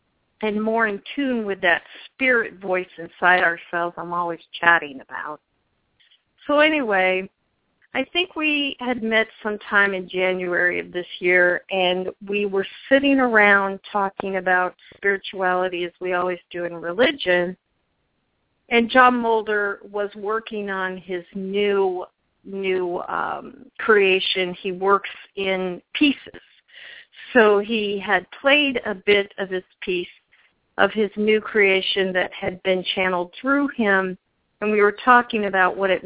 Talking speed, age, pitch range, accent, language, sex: 135 wpm, 50-69, 185-225 Hz, American, English, female